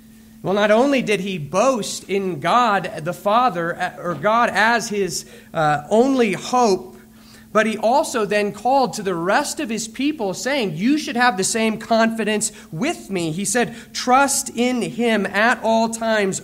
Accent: American